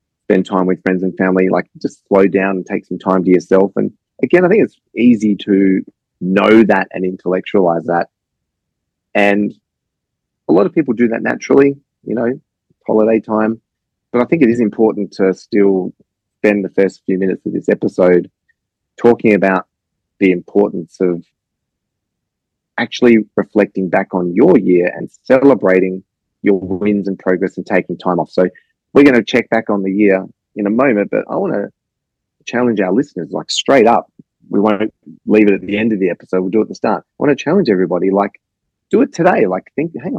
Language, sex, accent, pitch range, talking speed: English, male, Australian, 95-115 Hz, 190 wpm